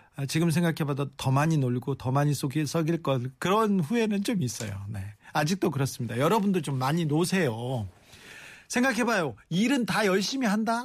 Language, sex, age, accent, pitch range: Korean, male, 40-59, native, 135-195 Hz